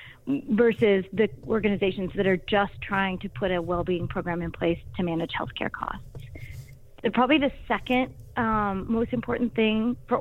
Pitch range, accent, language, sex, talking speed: 190-235 Hz, American, English, female, 160 wpm